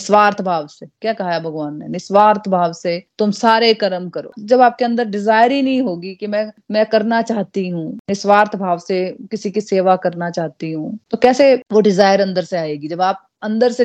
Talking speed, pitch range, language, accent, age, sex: 210 wpm, 180-230 Hz, Hindi, native, 30-49, female